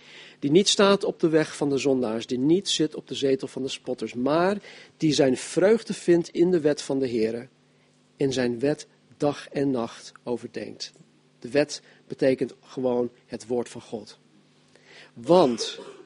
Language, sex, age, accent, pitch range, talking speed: Dutch, male, 50-69, Dutch, 130-170 Hz, 170 wpm